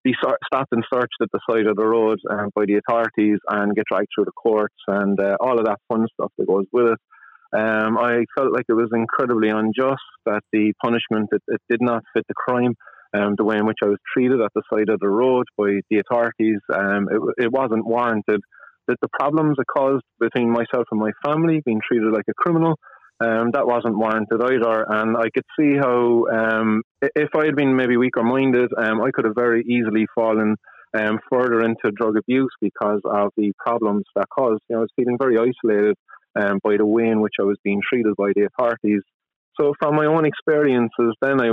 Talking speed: 215 wpm